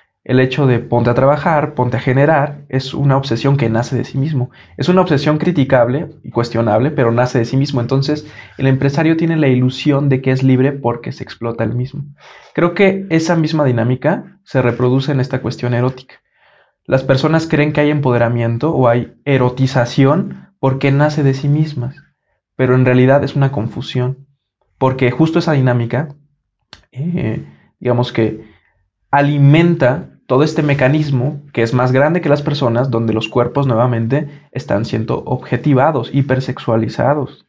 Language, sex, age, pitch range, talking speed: Spanish, male, 20-39, 120-145 Hz, 160 wpm